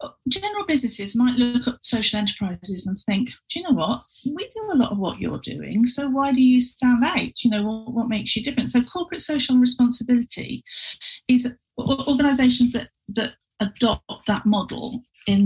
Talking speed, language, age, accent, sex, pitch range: 180 wpm, English, 40-59, British, female, 200-250 Hz